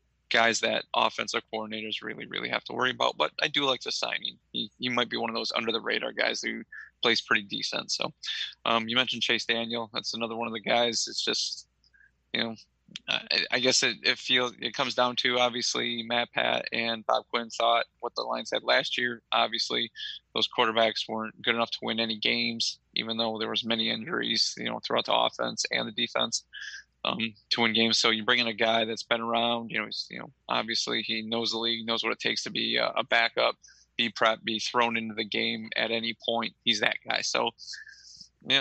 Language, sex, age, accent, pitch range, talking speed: English, male, 20-39, American, 110-120 Hz, 215 wpm